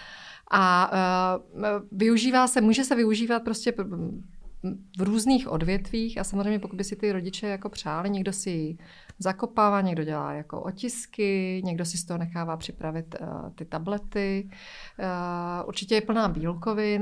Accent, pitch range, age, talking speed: native, 185-215 Hz, 30-49, 140 wpm